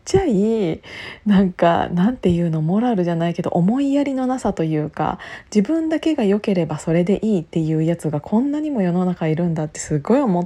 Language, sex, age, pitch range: Japanese, female, 20-39, 170-210 Hz